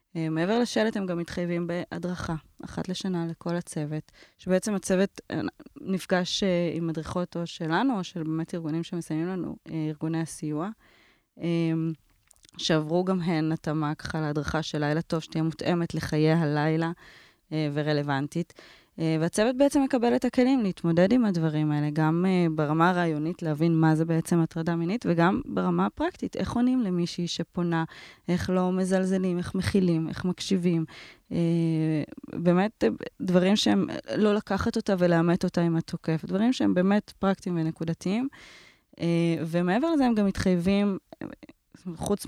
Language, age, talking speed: Hebrew, 20-39, 135 wpm